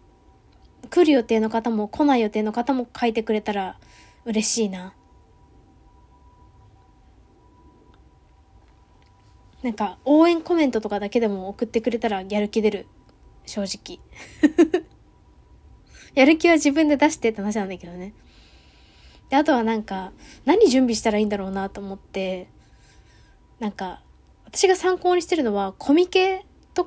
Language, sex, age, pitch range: Japanese, female, 20-39, 195-270 Hz